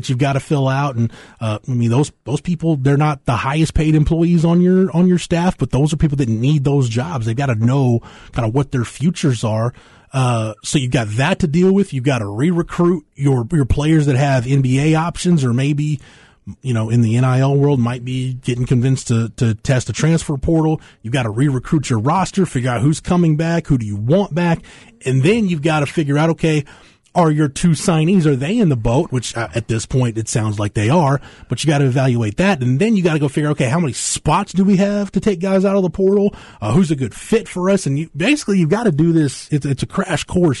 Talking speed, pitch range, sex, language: 250 wpm, 120-165 Hz, male, English